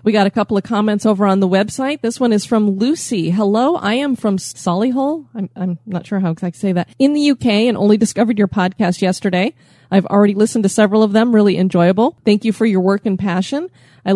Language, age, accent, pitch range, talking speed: English, 30-49, American, 180-225 Hz, 235 wpm